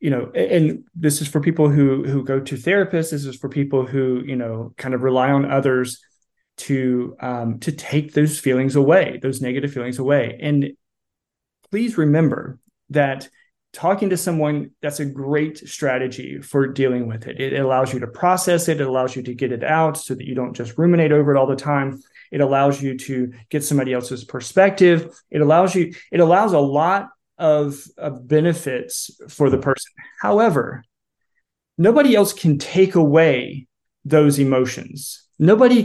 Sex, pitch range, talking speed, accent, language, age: male, 135-165 Hz, 175 wpm, American, English, 30-49